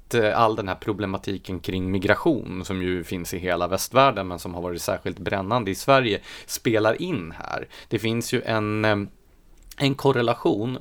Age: 30-49